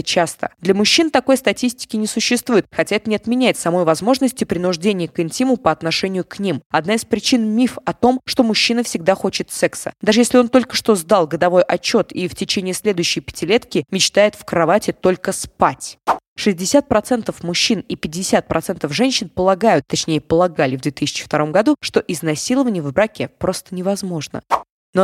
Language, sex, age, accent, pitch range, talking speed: Russian, female, 20-39, native, 165-220 Hz, 160 wpm